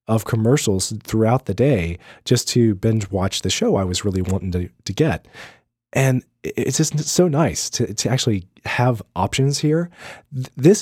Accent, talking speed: American, 165 wpm